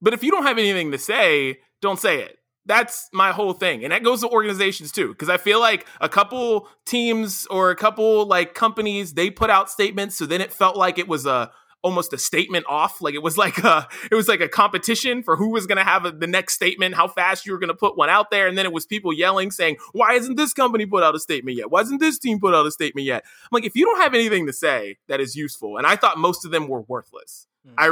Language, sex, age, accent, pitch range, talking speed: English, male, 20-39, American, 155-220 Hz, 265 wpm